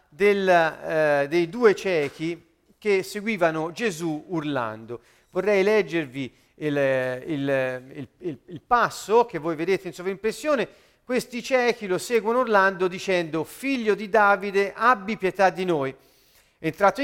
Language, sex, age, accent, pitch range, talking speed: Italian, male, 40-59, native, 165-225 Hz, 115 wpm